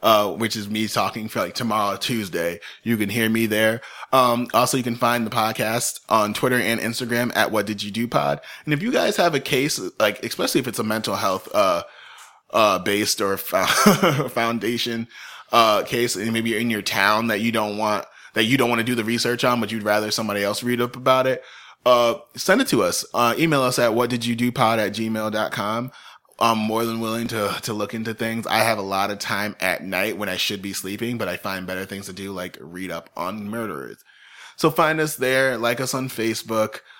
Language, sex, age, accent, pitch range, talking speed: English, male, 30-49, American, 110-125 Hz, 225 wpm